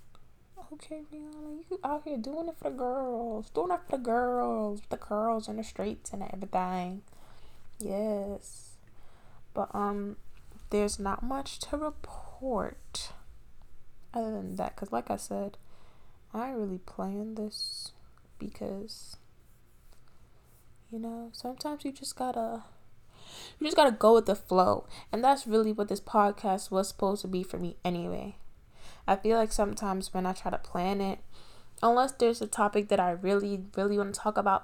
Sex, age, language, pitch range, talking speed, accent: female, 10-29, English, 185-230 Hz, 155 wpm, American